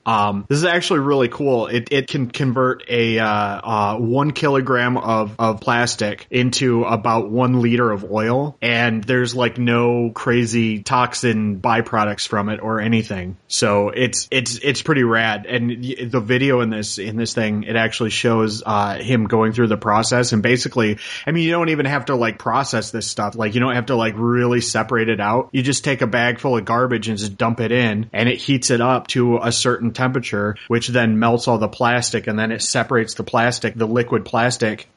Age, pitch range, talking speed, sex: 30-49, 110-125 Hz, 200 wpm, male